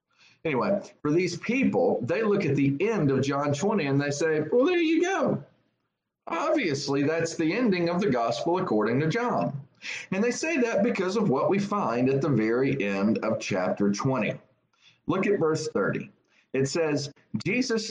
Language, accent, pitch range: English, American, 115-175 Hz